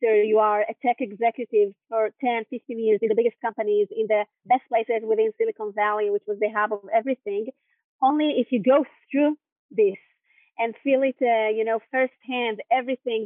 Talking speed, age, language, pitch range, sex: 180 wpm, 30-49, Hebrew, 220-275 Hz, female